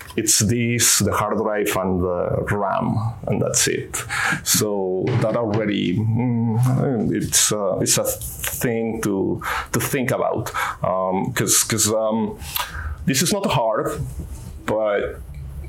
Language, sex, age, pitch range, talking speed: English, male, 30-49, 100-115 Hz, 115 wpm